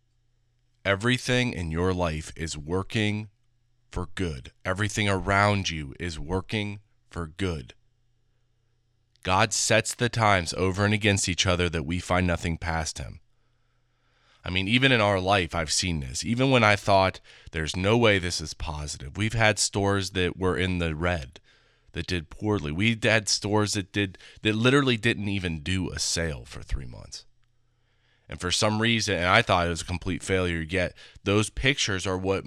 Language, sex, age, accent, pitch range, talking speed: English, male, 30-49, American, 90-115 Hz, 170 wpm